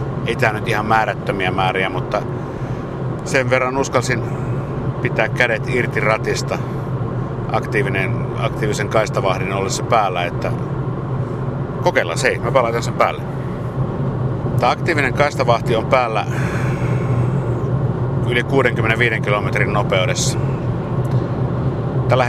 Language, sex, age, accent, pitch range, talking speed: Finnish, male, 60-79, native, 125-135 Hz, 95 wpm